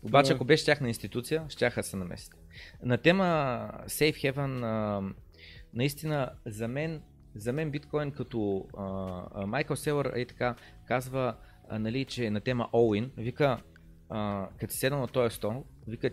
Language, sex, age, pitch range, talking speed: Bulgarian, male, 30-49, 110-145 Hz, 130 wpm